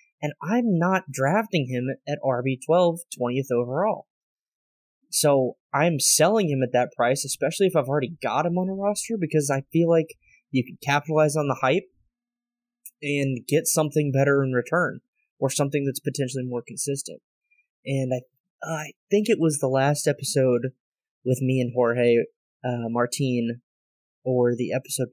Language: English